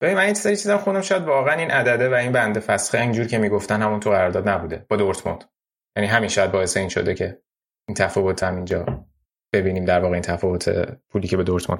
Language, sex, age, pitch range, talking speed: Persian, male, 20-39, 100-120 Hz, 205 wpm